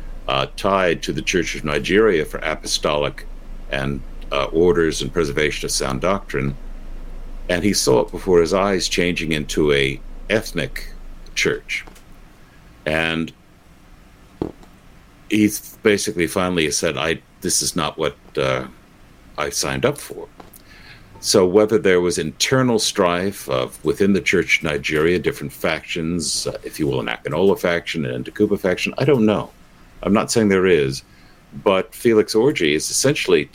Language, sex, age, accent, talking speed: English, male, 60-79, American, 145 wpm